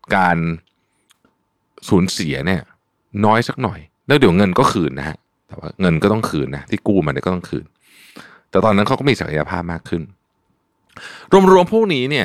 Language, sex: Thai, male